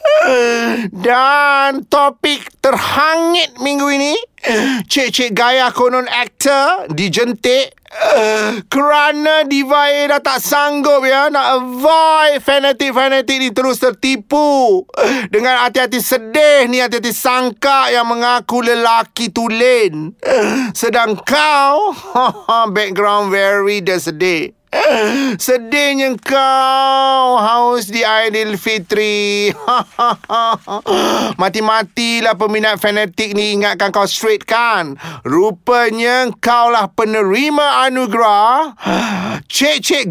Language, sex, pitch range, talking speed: Malay, male, 205-275 Hz, 95 wpm